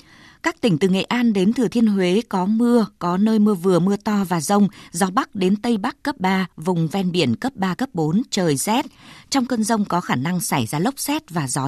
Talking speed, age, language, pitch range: 240 wpm, 20-39, Vietnamese, 175-225 Hz